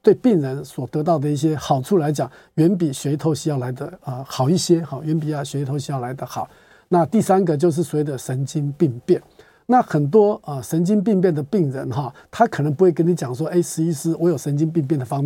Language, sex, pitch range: Chinese, male, 145-185 Hz